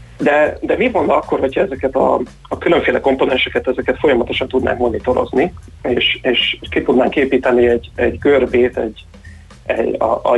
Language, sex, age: Hungarian, male, 30-49